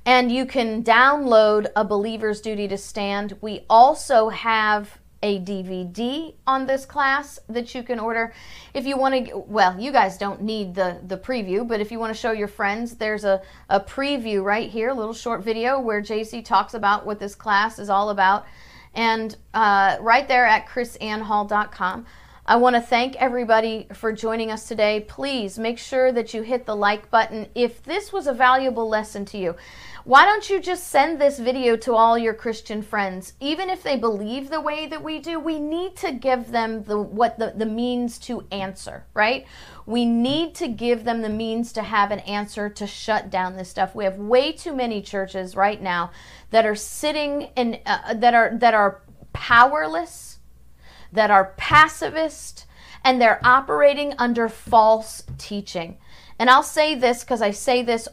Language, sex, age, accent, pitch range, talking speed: English, female, 40-59, American, 205-255 Hz, 185 wpm